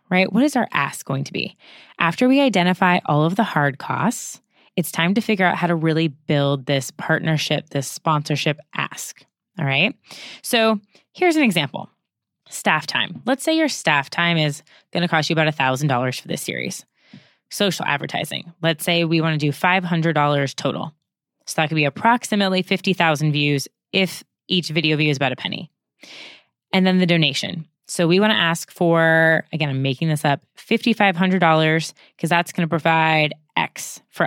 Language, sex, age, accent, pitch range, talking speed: English, female, 20-39, American, 155-200 Hz, 180 wpm